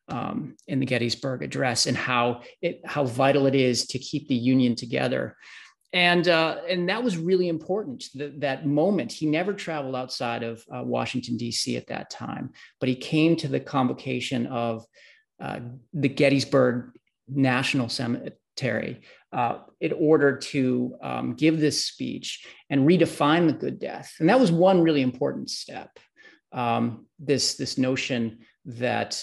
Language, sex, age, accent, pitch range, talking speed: English, male, 30-49, American, 125-155 Hz, 155 wpm